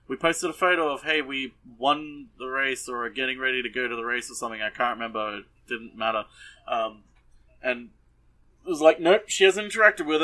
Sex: male